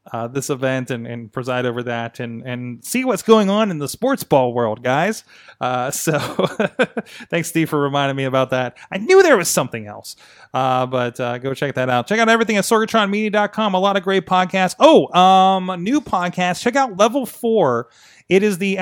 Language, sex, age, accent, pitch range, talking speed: English, male, 30-49, American, 125-170 Hz, 205 wpm